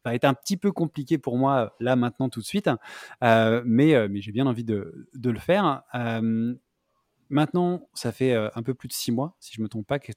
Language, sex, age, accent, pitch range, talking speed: French, male, 20-39, French, 115-145 Hz, 240 wpm